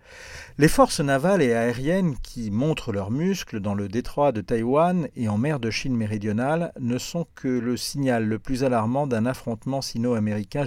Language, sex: French, male